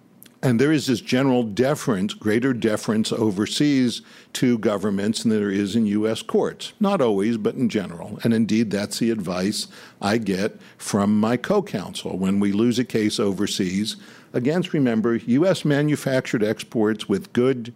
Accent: American